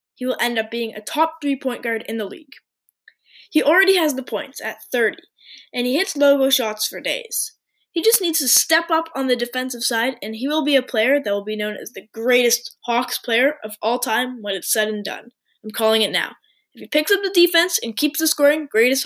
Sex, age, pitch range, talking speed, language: female, 10-29, 225-305 Hz, 235 wpm, English